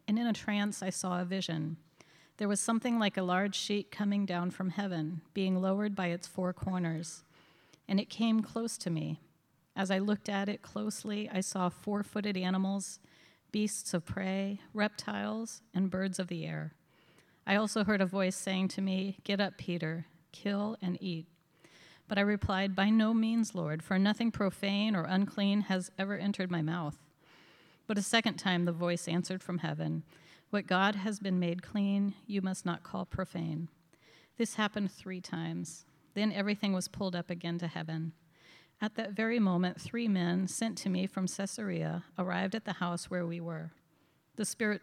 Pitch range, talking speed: 170-205 Hz, 180 wpm